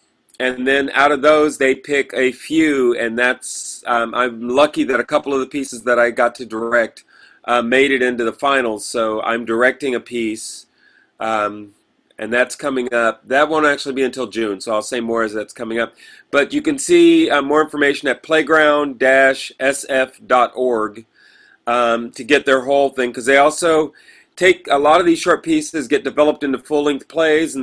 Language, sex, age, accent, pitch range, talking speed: English, male, 30-49, American, 115-145 Hz, 185 wpm